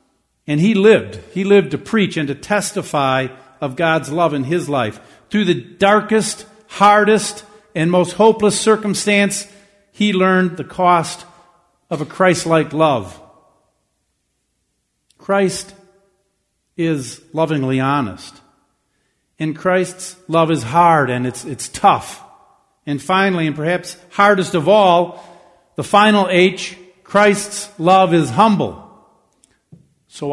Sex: male